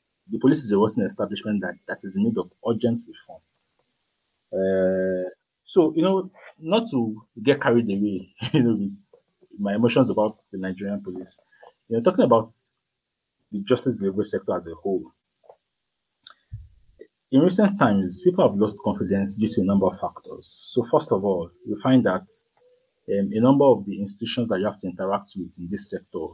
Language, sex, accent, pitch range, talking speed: English, male, Nigerian, 100-130 Hz, 180 wpm